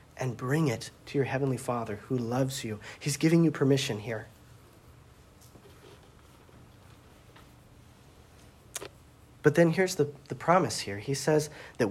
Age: 40-59